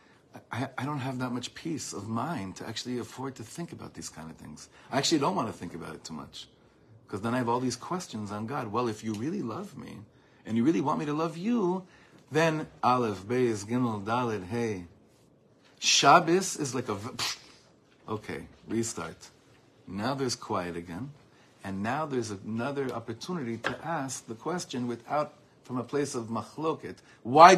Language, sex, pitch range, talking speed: English, male, 110-145 Hz, 185 wpm